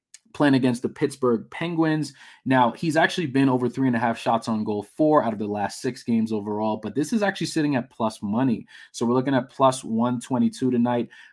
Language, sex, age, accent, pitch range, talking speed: English, male, 20-39, American, 115-140 Hz, 210 wpm